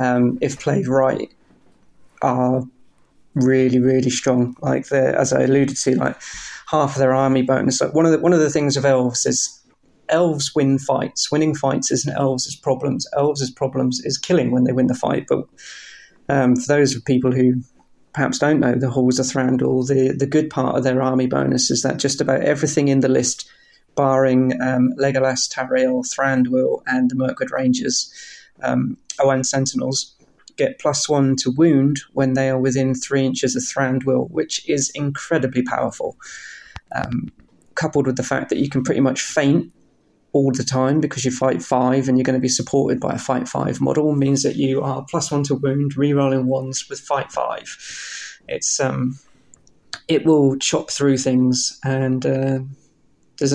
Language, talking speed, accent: English, 180 wpm, British